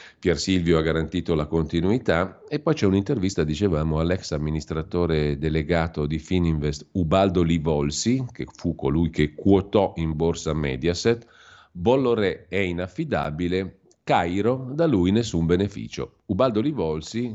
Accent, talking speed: native, 125 wpm